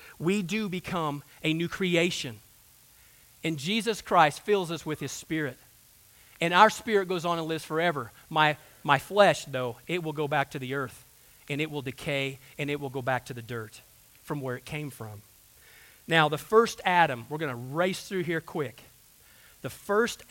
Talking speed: 185 wpm